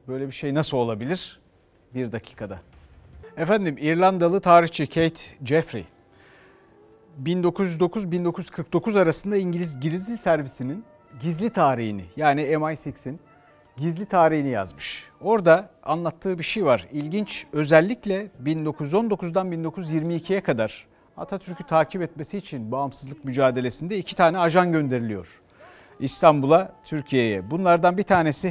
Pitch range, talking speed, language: 130-185 Hz, 105 wpm, Turkish